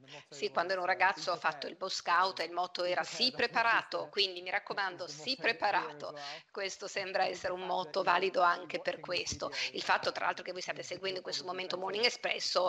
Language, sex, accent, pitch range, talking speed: English, female, Italian, 180-225 Hz, 205 wpm